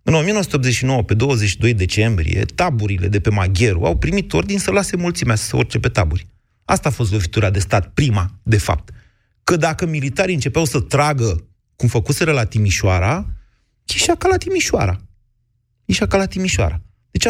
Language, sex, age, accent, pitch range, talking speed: Romanian, male, 30-49, native, 105-155 Hz, 165 wpm